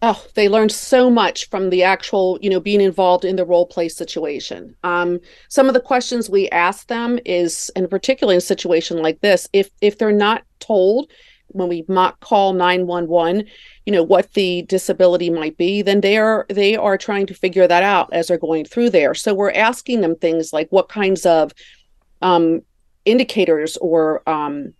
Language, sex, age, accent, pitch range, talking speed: English, female, 40-59, American, 175-220 Hz, 195 wpm